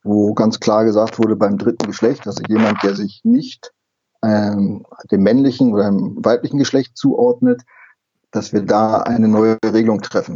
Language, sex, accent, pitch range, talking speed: German, male, German, 110-135 Hz, 160 wpm